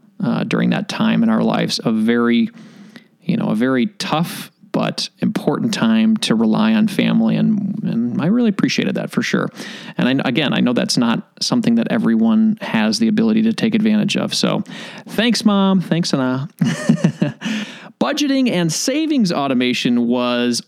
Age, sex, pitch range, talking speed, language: 30-49, male, 175-230 Hz, 165 wpm, English